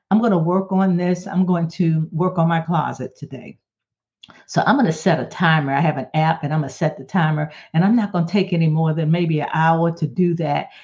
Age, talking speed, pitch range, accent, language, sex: 50-69, 260 wpm, 170-225 Hz, American, English, female